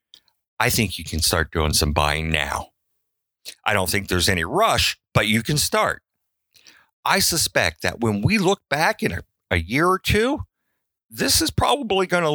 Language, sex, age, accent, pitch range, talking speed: English, male, 50-69, American, 90-120 Hz, 180 wpm